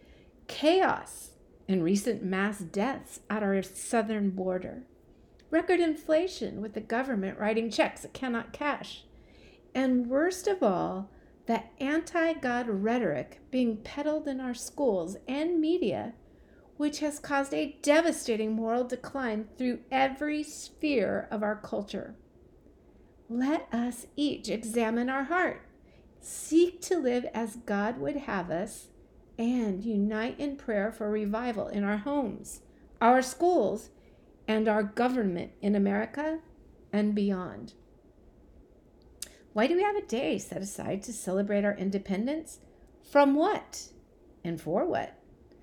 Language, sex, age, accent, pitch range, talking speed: English, female, 50-69, American, 210-290 Hz, 125 wpm